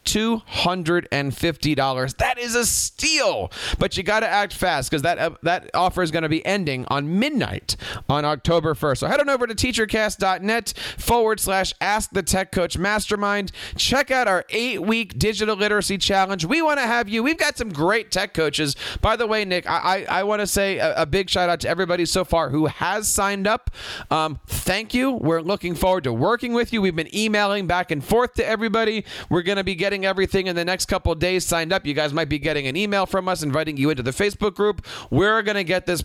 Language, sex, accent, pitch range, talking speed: English, male, American, 155-215 Hz, 220 wpm